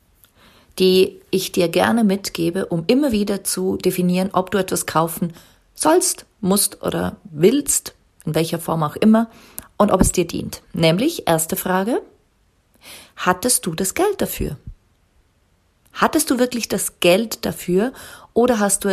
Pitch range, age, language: 150-205 Hz, 40-59, German